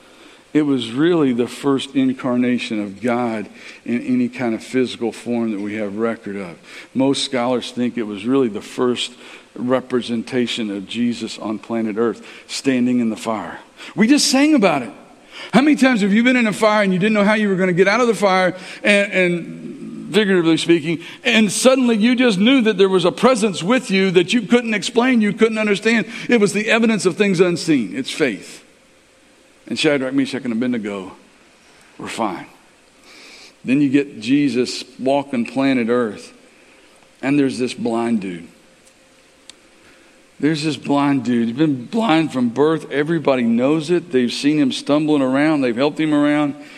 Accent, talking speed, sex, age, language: American, 175 wpm, male, 50-69, English